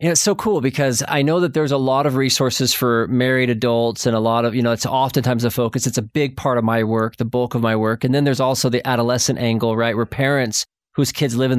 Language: English